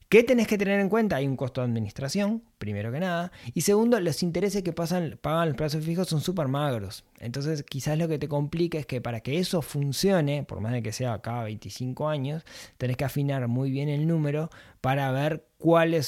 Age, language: 20-39, Spanish